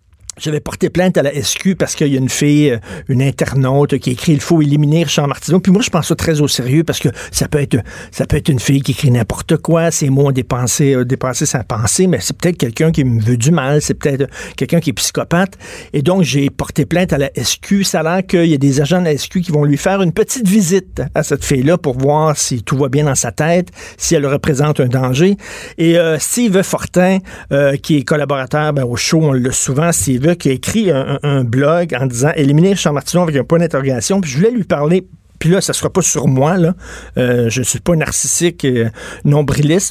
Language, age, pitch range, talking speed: French, 50-69, 140-175 Hz, 240 wpm